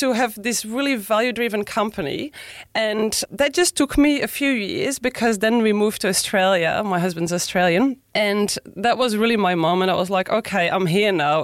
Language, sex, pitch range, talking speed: English, female, 195-245 Hz, 195 wpm